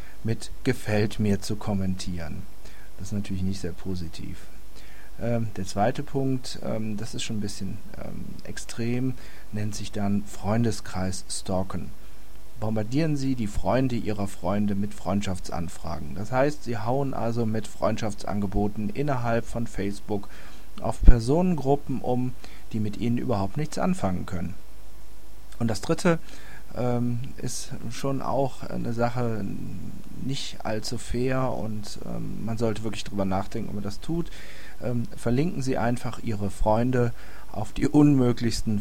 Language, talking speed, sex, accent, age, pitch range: German, 125 wpm, male, German, 40-59, 100-120 Hz